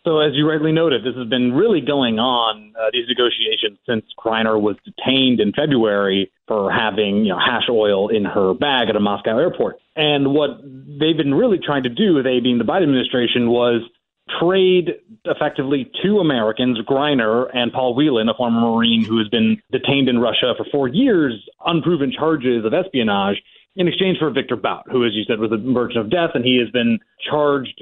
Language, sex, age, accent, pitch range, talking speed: English, male, 30-49, American, 115-145 Hz, 195 wpm